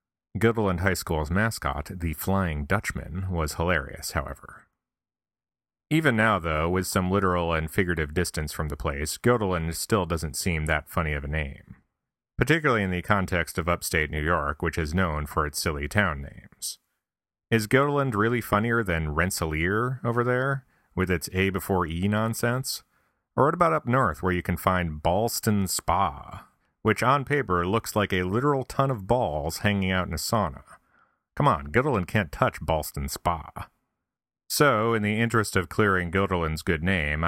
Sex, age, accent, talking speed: male, 30-49, American, 165 wpm